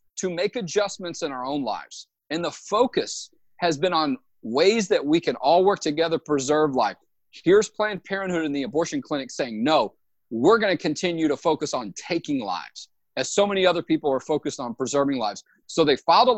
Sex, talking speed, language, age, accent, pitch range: male, 195 wpm, English, 40-59, American, 140-185 Hz